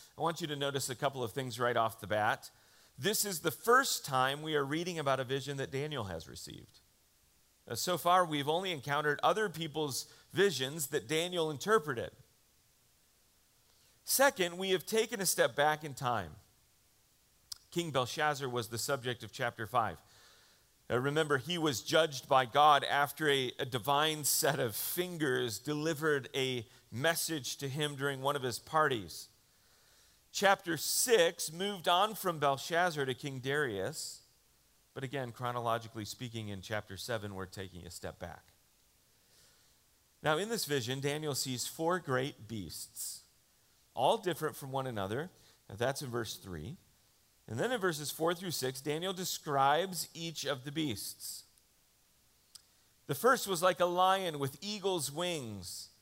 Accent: American